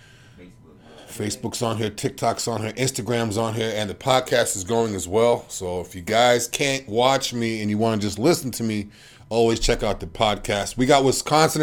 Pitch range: 100-130 Hz